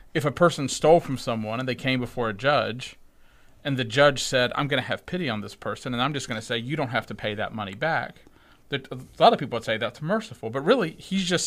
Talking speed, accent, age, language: 260 wpm, American, 40-59, English